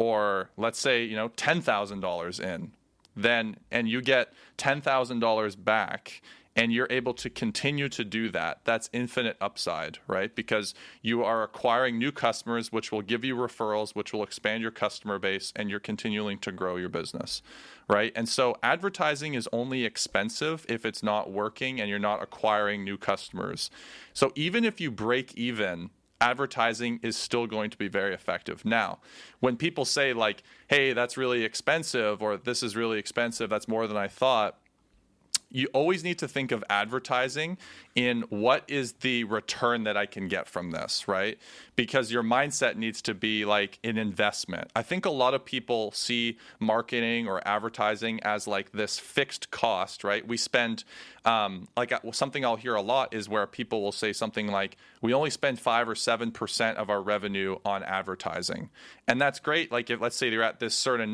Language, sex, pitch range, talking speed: English, male, 105-125 Hz, 180 wpm